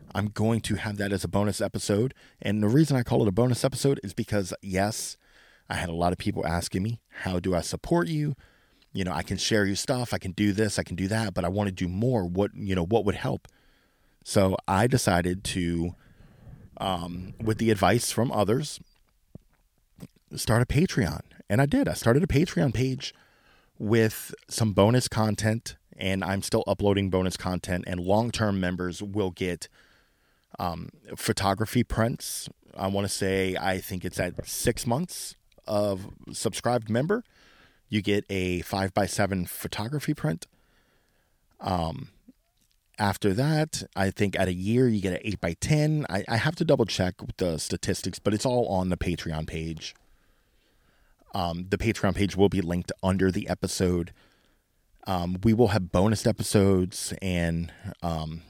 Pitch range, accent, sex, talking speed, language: 95-115 Hz, American, male, 170 wpm, English